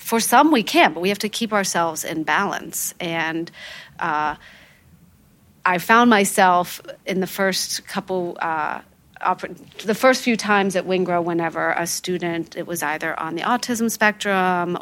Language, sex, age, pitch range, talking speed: English, female, 40-59, 175-210 Hz, 160 wpm